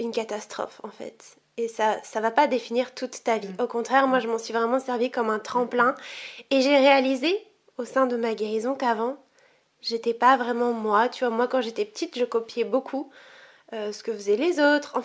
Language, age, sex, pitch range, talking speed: French, 20-39, female, 230-270 Hz, 210 wpm